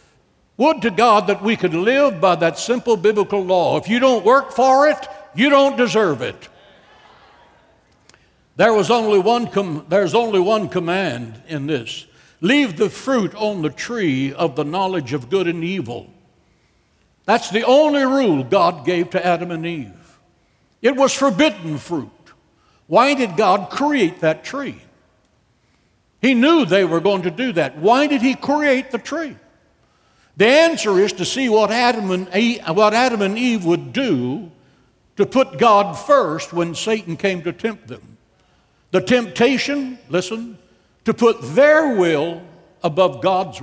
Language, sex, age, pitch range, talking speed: English, male, 60-79, 170-250 Hz, 155 wpm